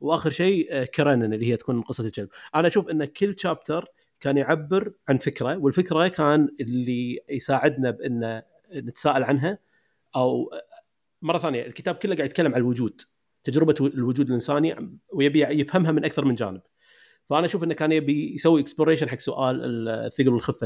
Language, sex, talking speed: Arabic, male, 155 wpm